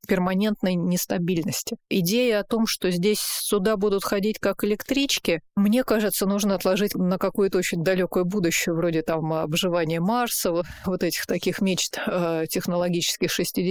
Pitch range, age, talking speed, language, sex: 180-215 Hz, 30-49, 130 wpm, Russian, female